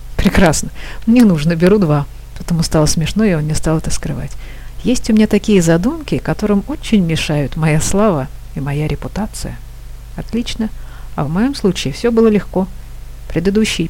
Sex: female